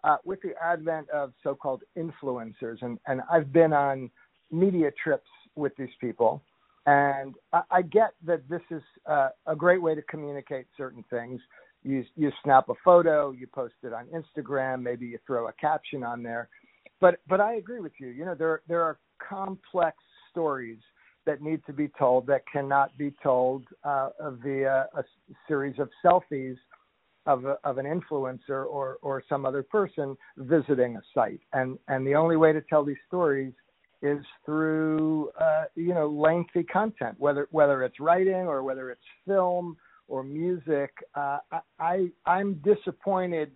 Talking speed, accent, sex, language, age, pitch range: 165 wpm, American, male, English, 50-69, 135-165 Hz